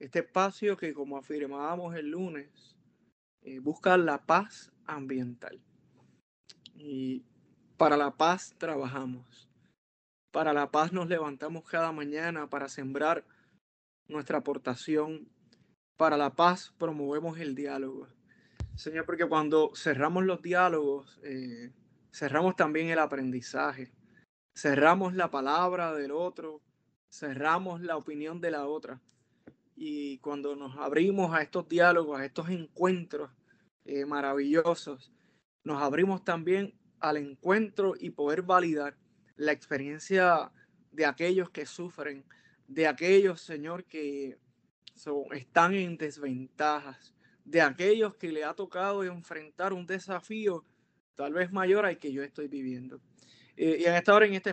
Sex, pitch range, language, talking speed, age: male, 145-180 Hz, Spanish, 125 wpm, 20-39